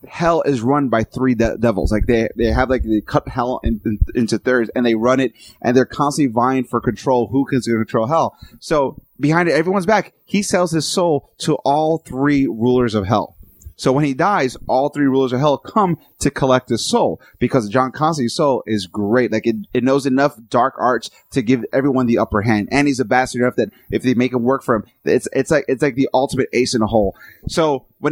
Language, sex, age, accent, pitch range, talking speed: English, male, 30-49, American, 115-145 Hz, 220 wpm